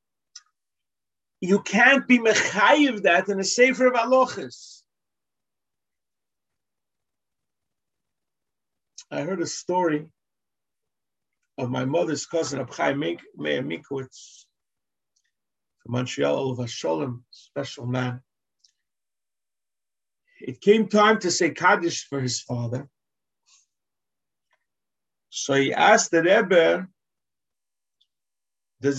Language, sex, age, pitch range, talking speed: English, male, 50-69, 125-205 Hz, 85 wpm